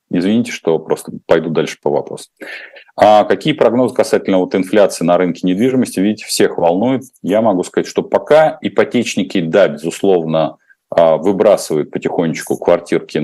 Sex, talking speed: male, 135 wpm